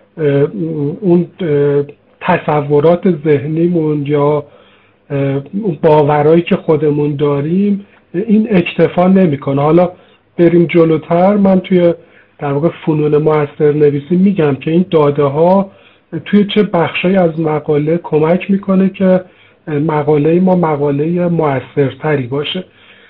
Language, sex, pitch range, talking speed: Persian, male, 150-185 Hz, 100 wpm